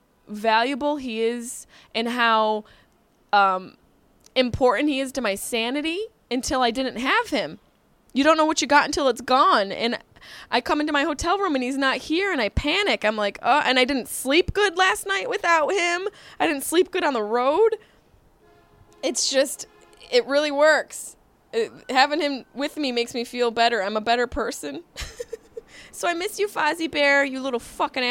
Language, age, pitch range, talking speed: English, 20-39, 215-300 Hz, 185 wpm